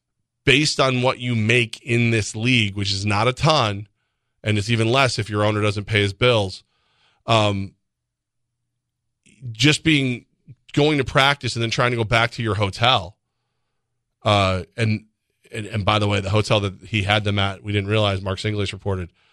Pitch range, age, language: 100-125 Hz, 30-49, English